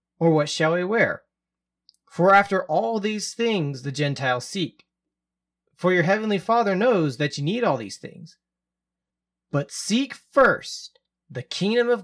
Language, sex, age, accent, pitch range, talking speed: English, male, 30-49, American, 130-185 Hz, 150 wpm